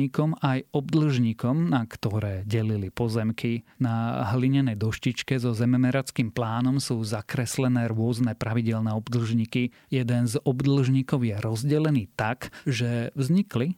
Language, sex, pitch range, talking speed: Slovak, male, 115-135 Hz, 110 wpm